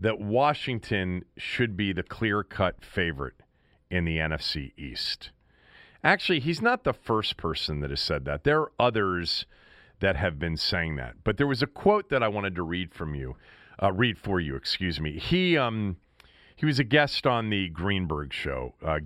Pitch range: 85-125 Hz